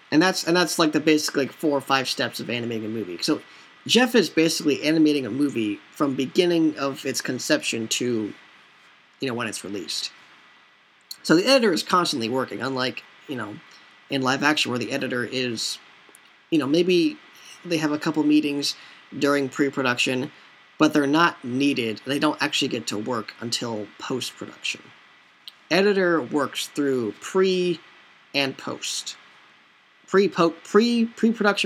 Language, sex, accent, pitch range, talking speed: English, male, American, 115-155 Hz, 150 wpm